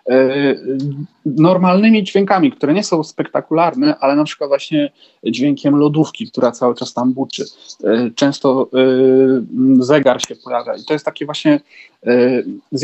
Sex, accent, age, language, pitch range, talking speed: male, native, 40-59, Polish, 140-180 Hz, 125 wpm